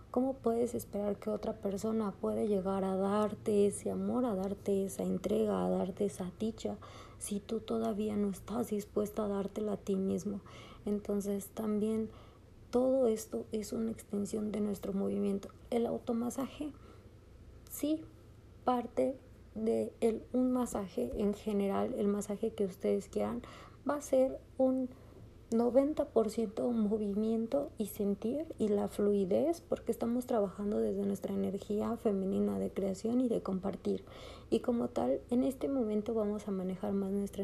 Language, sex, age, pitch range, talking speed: Spanish, female, 30-49, 195-230 Hz, 145 wpm